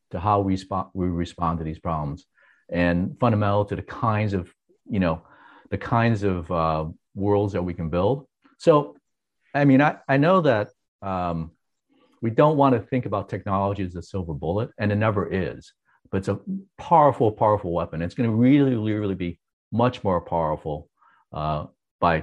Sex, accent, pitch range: male, American, 95-130 Hz